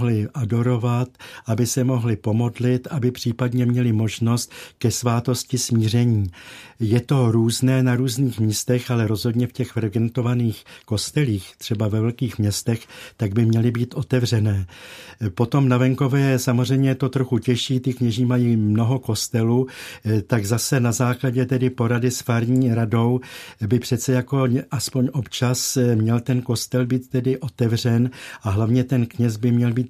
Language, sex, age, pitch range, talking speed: Czech, male, 50-69, 115-130 Hz, 145 wpm